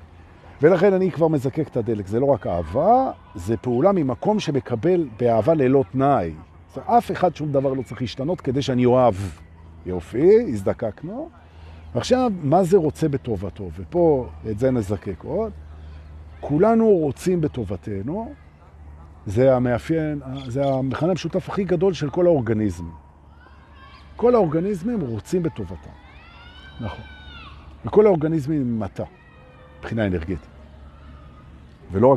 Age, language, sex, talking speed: 50-69, Hebrew, male, 110 wpm